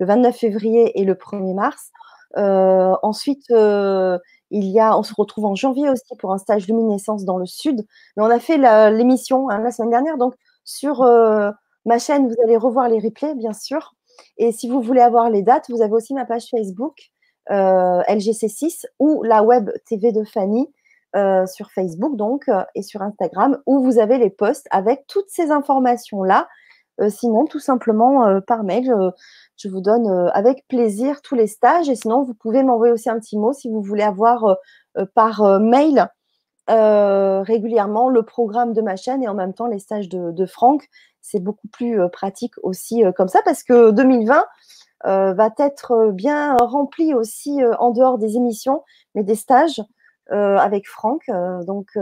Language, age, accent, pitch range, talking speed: French, 20-39, French, 205-260 Hz, 185 wpm